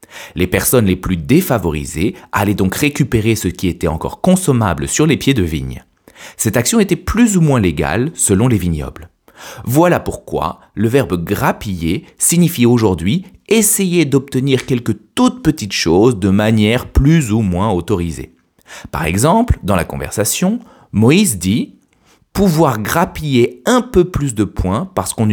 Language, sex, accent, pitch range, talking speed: French, male, French, 90-145 Hz, 150 wpm